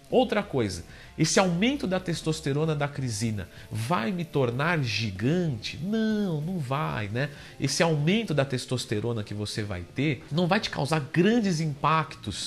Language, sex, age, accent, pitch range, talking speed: Portuguese, male, 50-69, Brazilian, 115-155 Hz, 145 wpm